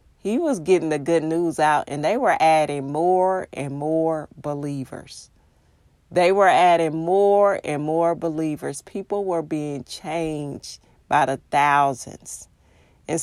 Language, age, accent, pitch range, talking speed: English, 40-59, American, 145-170 Hz, 135 wpm